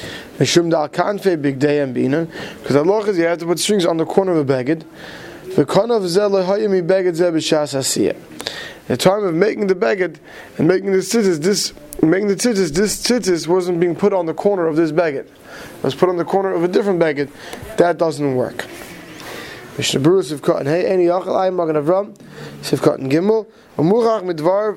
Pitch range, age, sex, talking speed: 155-195 Hz, 20-39, male, 125 wpm